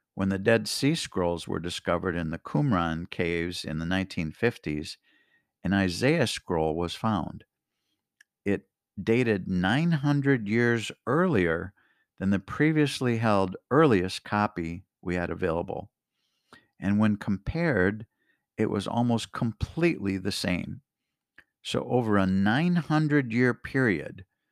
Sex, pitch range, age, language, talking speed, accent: male, 95-115 Hz, 50-69, English, 115 wpm, American